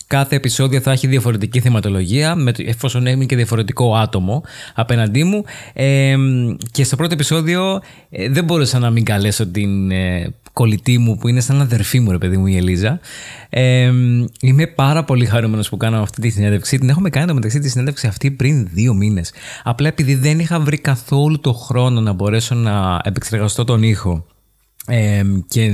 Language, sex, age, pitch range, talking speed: Greek, male, 20-39, 110-135 Hz, 175 wpm